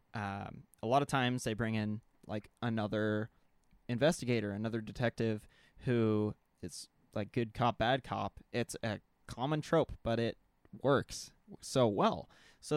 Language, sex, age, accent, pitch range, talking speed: English, male, 20-39, American, 105-125 Hz, 140 wpm